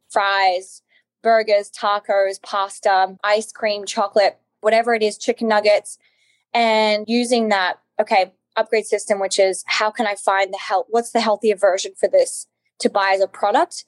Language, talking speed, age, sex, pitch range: English, 160 wpm, 10-29, female, 195-230 Hz